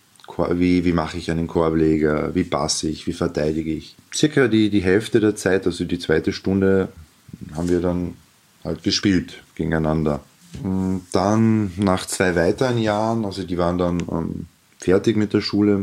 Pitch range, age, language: 90-105 Hz, 30-49, German